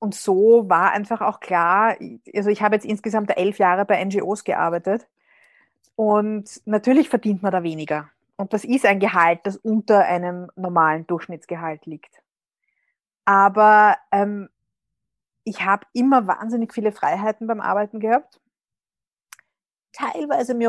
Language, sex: German, female